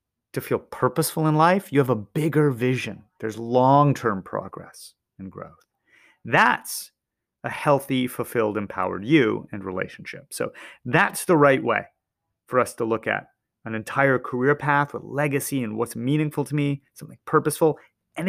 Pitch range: 120-165 Hz